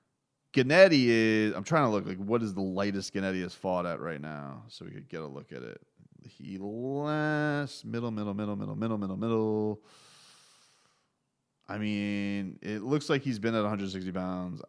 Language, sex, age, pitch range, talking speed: English, male, 30-49, 100-130 Hz, 180 wpm